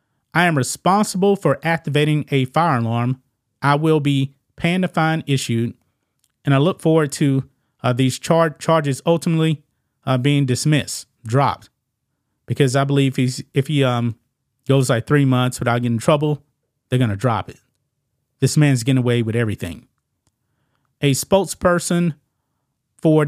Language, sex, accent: English, male, American